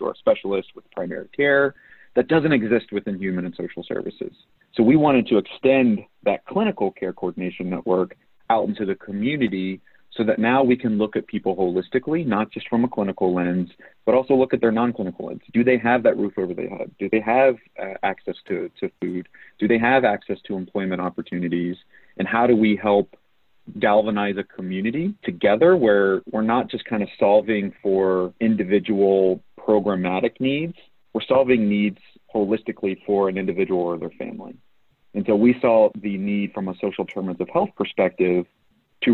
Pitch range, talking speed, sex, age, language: 95-120 Hz, 180 wpm, male, 30-49, English